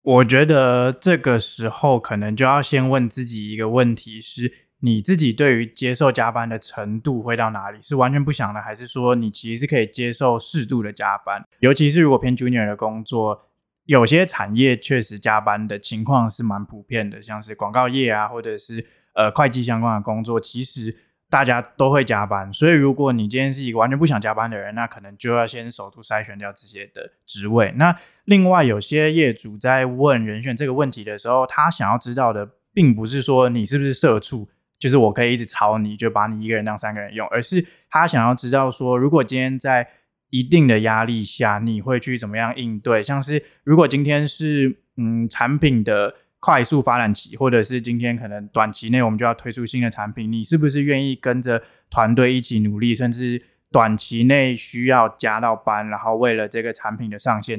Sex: male